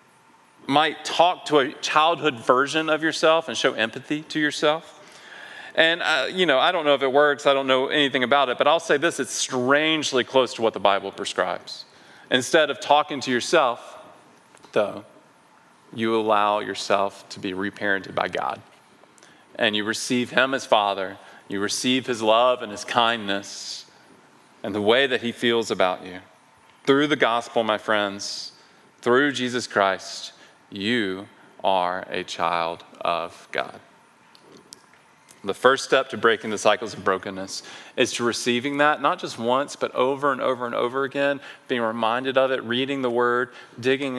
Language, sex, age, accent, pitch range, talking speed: English, male, 40-59, American, 105-135 Hz, 165 wpm